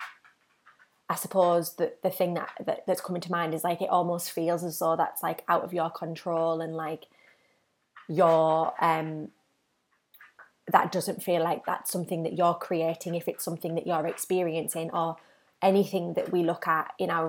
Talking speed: 175 wpm